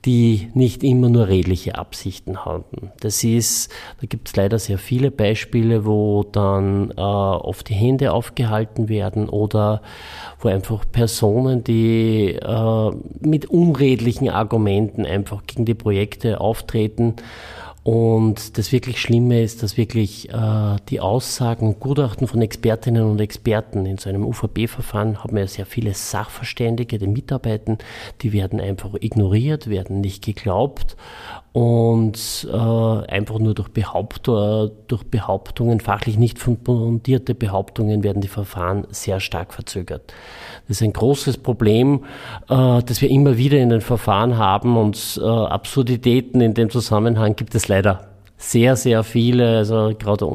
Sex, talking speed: male, 140 wpm